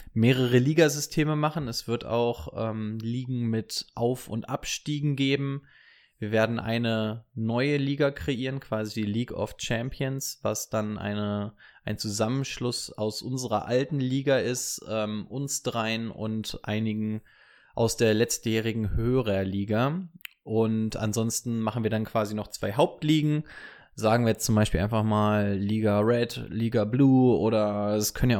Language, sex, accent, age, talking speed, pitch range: German, male, German, 20-39, 145 wpm, 110-130 Hz